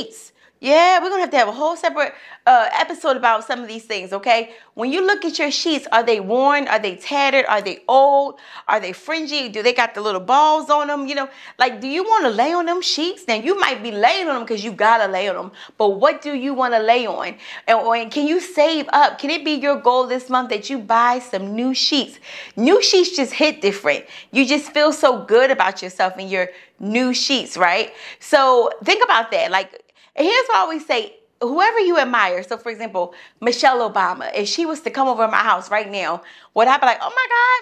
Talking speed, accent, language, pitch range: 235 wpm, American, English, 230-320 Hz